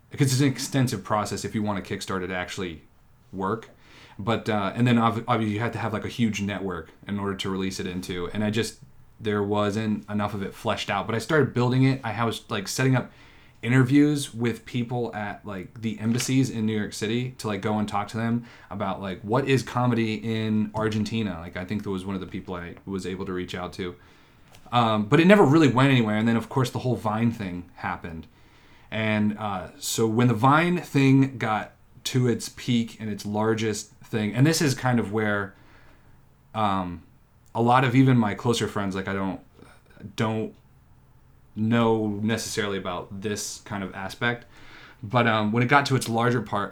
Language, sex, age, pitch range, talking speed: English, male, 30-49, 100-120 Hz, 205 wpm